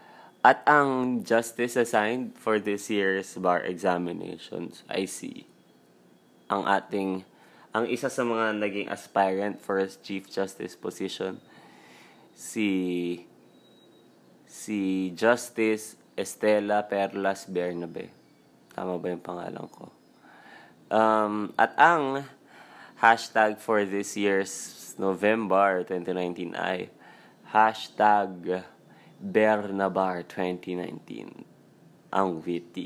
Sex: male